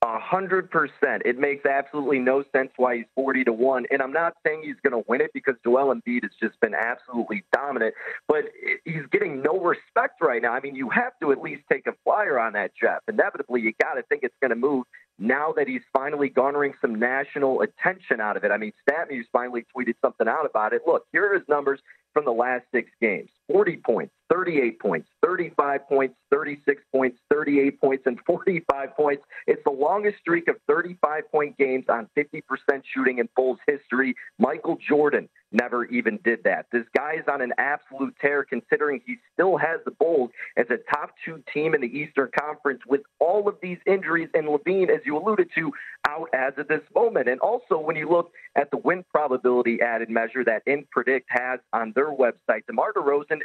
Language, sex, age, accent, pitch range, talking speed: English, male, 40-59, American, 130-210 Hz, 200 wpm